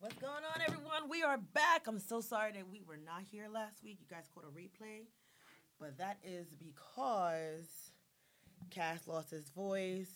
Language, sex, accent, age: English, female, American, 20-39